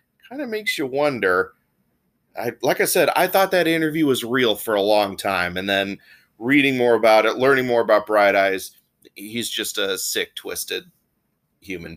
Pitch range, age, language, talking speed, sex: 105-165 Hz, 30-49, English, 180 wpm, male